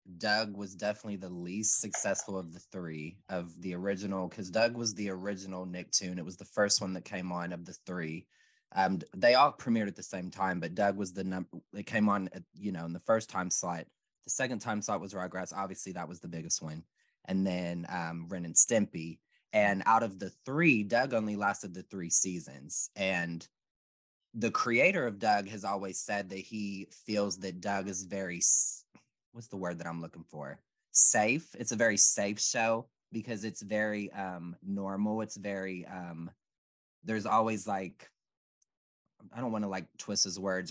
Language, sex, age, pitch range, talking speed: English, male, 20-39, 90-105 Hz, 190 wpm